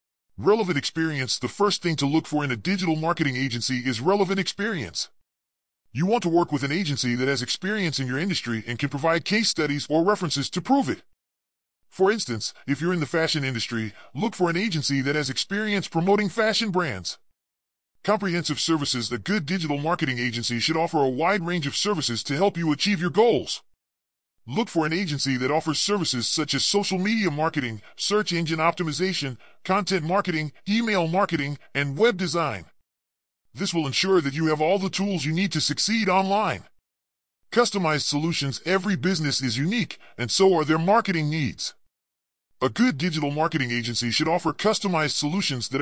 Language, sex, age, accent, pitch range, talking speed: English, female, 30-49, American, 125-190 Hz, 175 wpm